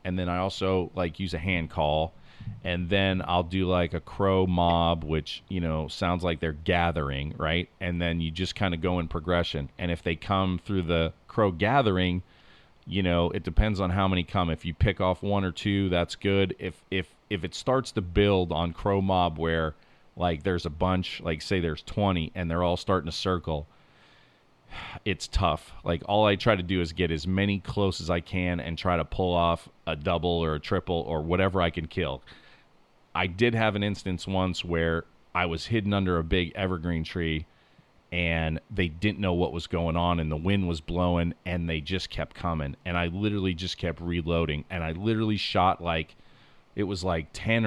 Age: 30-49